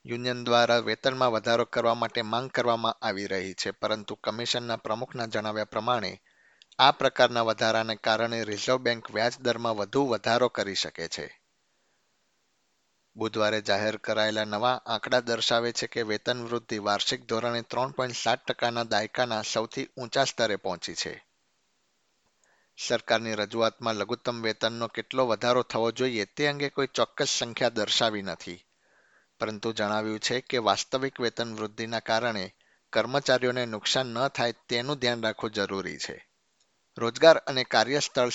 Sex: male